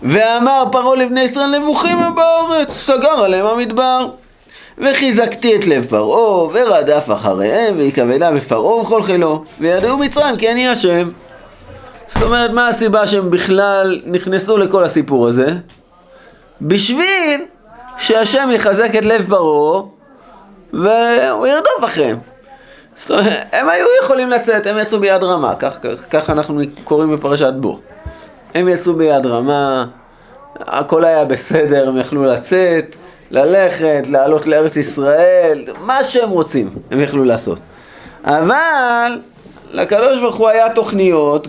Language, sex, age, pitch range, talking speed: Hebrew, male, 20-39, 160-260 Hz, 125 wpm